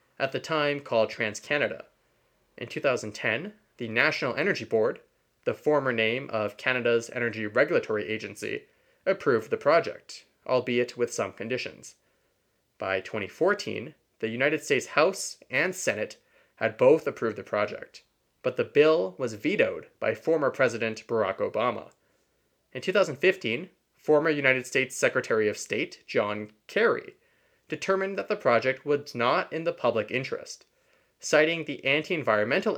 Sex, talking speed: male, 130 wpm